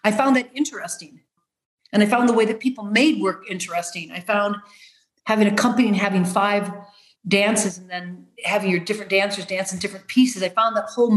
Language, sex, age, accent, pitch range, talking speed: English, female, 40-59, American, 190-225 Hz, 200 wpm